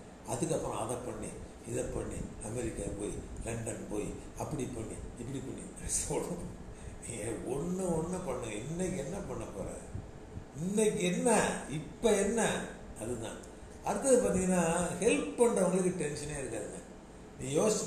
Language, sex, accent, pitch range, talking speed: Tamil, male, native, 130-185 Hz, 115 wpm